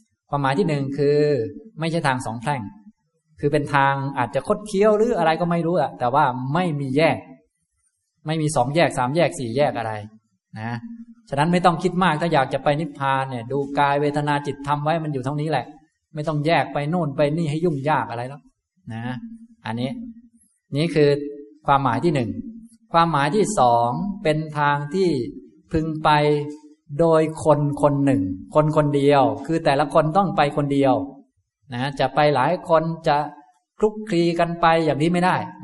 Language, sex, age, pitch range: Thai, male, 20-39, 130-165 Hz